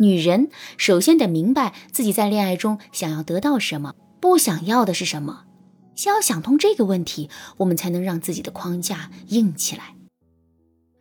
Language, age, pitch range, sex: Chinese, 20-39, 170-240 Hz, female